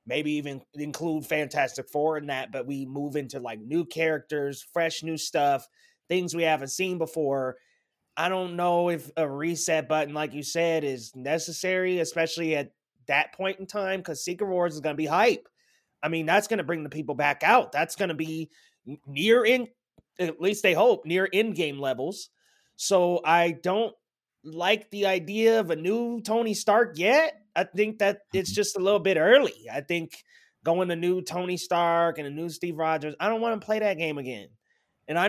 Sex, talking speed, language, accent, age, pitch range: male, 195 wpm, English, American, 30-49, 160-205 Hz